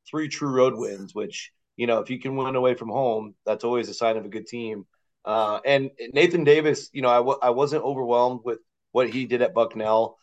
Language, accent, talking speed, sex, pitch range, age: English, American, 230 wpm, male, 115-130 Hz, 30-49